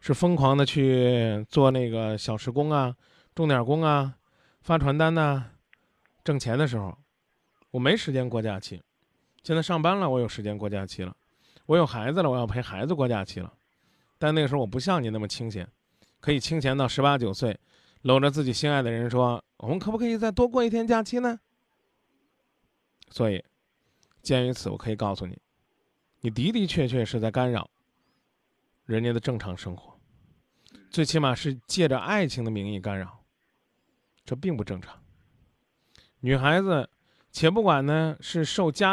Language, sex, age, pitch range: Chinese, male, 20-39, 115-155 Hz